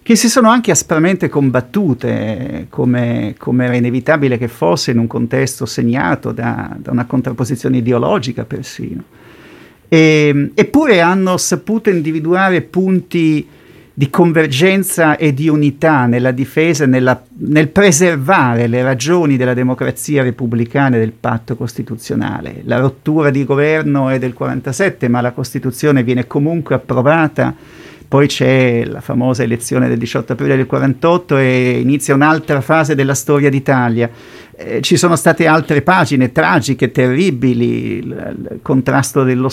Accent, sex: native, male